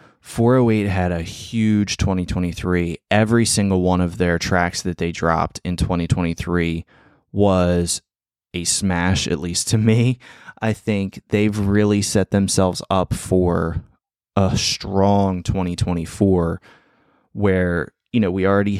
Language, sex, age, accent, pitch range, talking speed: English, male, 20-39, American, 85-100 Hz, 125 wpm